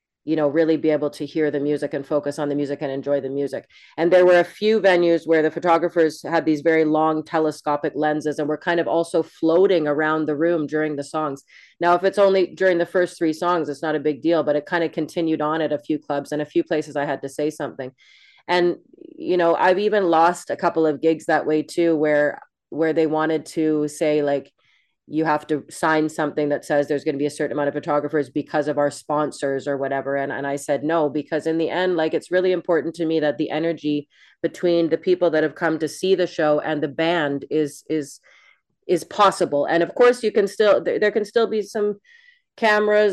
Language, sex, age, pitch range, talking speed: Dutch, female, 30-49, 150-175 Hz, 235 wpm